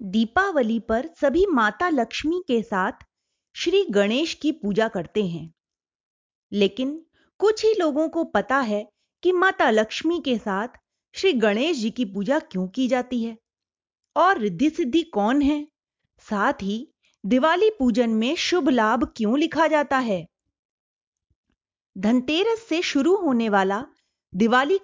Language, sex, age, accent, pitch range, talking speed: Hindi, female, 30-49, native, 210-300 Hz, 135 wpm